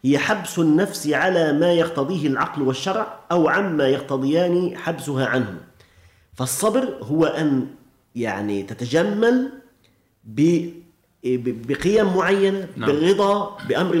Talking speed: 95 wpm